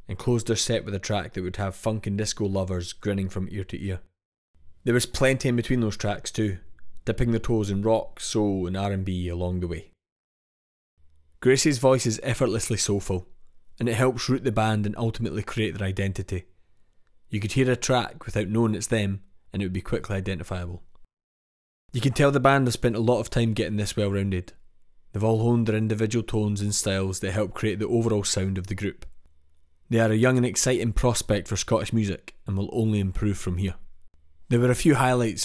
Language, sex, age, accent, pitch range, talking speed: English, male, 20-39, British, 95-115 Hz, 205 wpm